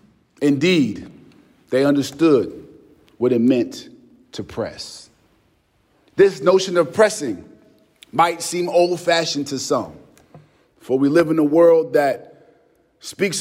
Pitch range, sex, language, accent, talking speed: 160-240 Hz, male, English, American, 115 wpm